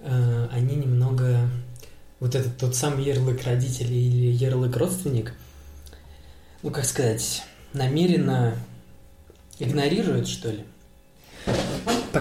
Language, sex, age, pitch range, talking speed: Russian, male, 20-39, 115-130 Hz, 95 wpm